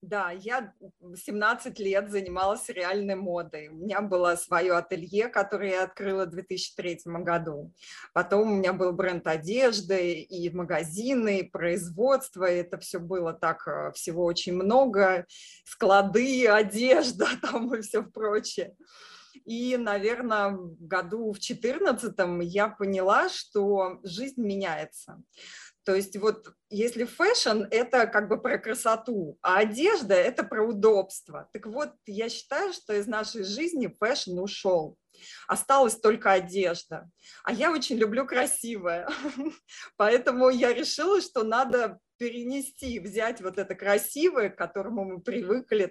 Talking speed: 130 wpm